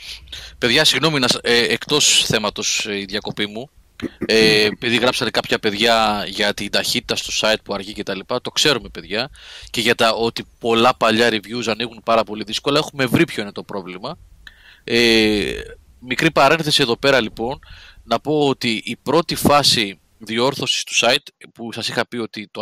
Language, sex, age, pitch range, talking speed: Greek, male, 30-49, 105-145 Hz, 170 wpm